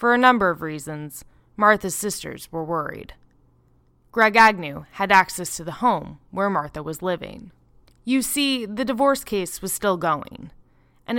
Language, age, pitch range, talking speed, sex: English, 20-39, 165-225 Hz, 155 wpm, female